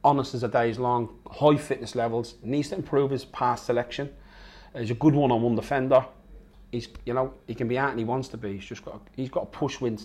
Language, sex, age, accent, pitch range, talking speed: English, male, 30-49, British, 110-130 Hz, 240 wpm